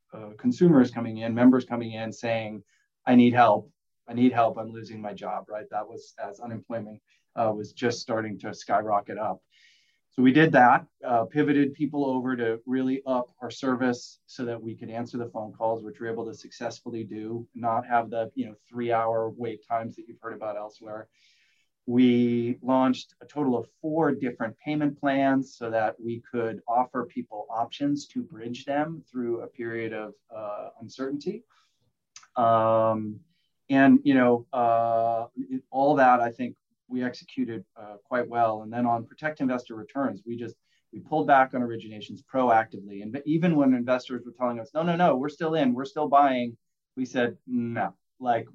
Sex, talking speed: male, 175 wpm